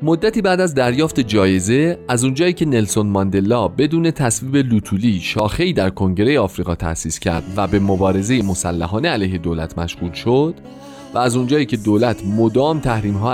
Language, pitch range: Persian, 95-145 Hz